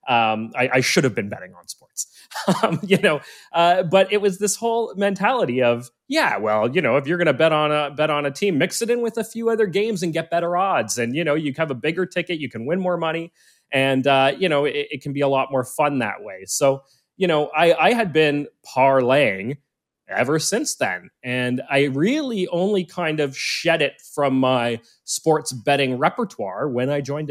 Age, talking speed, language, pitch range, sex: 30-49, 220 wpm, English, 125-170 Hz, male